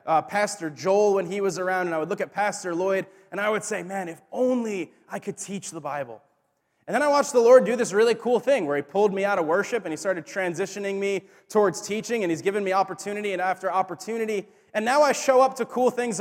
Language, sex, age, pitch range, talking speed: English, male, 20-39, 190-250 Hz, 250 wpm